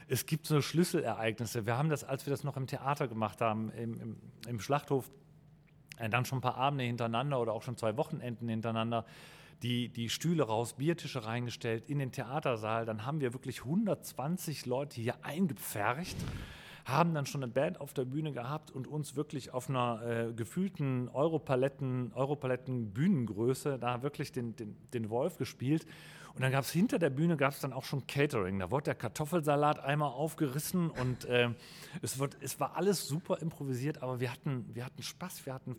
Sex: male